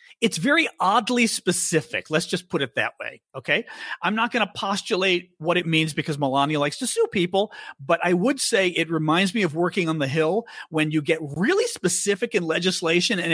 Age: 40-59